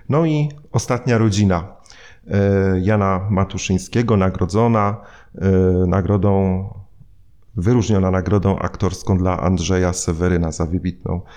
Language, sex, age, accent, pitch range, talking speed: Polish, male, 30-49, native, 95-115 Hz, 85 wpm